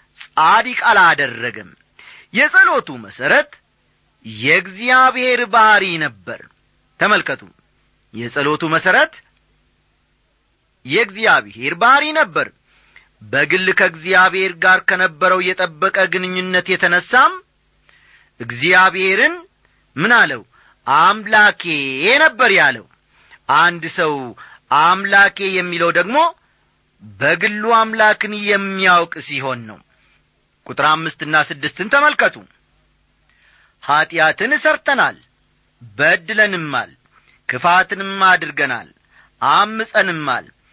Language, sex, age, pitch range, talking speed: Amharic, male, 40-59, 165-250 Hz, 70 wpm